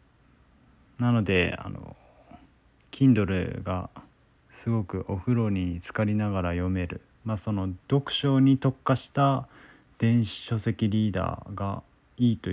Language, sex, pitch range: Japanese, male, 95-125 Hz